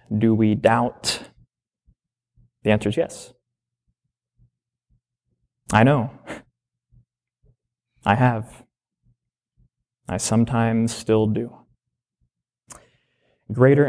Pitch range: 120-165 Hz